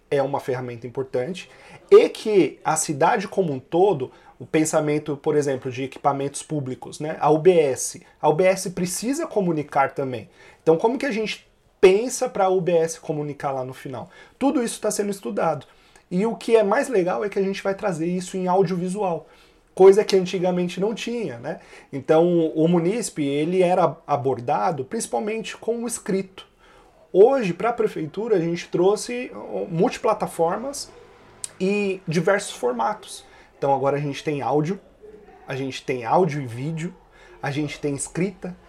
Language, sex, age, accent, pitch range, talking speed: Portuguese, male, 30-49, Brazilian, 150-210 Hz, 160 wpm